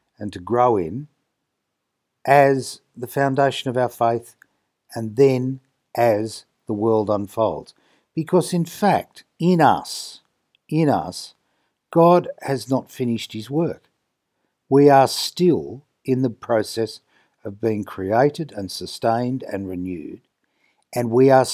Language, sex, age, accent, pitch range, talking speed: English, male, 60-79, Australian, 105-140 Hz, 125 wpm